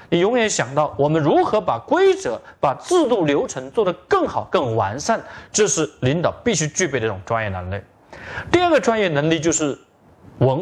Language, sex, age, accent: Chinese, male, 40-59, native